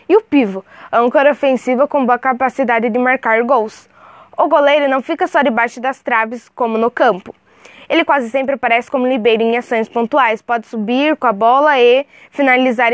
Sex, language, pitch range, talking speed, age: female, Portuguese, 235-280 Hz, 175 wpm, 10-29